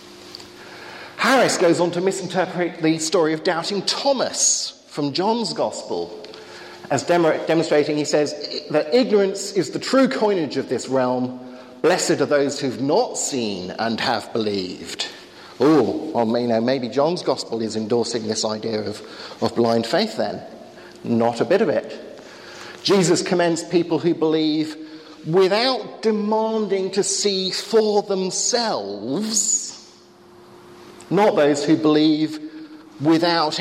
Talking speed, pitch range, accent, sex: 130 wpm, 135-195 Hz, British, male